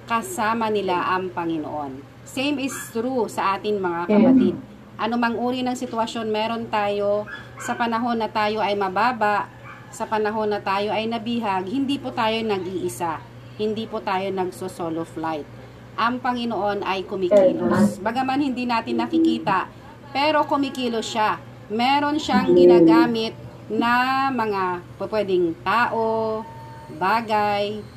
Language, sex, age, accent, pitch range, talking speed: Filipino, female, 40-59, native, 185-240 Hz, 125 wpm